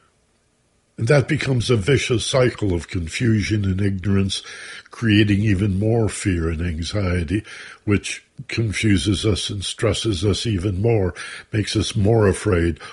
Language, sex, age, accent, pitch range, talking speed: English, male, 60-79, American, 95-120 Hz, 130 wpm